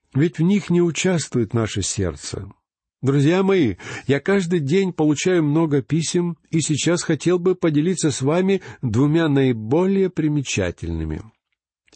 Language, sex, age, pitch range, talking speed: Russian, male, 50-69, 115-165 Hz, 125 wpm